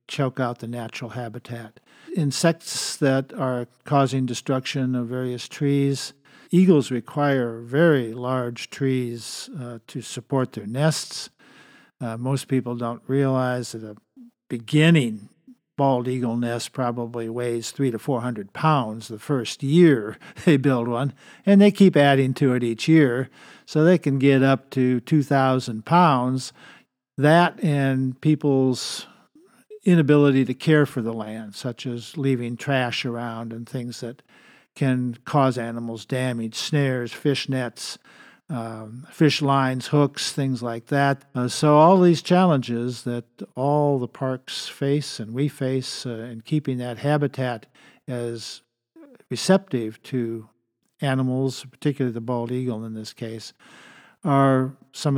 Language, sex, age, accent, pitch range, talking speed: English, male, 50-69, American, 120-145 Hz, 135 wpm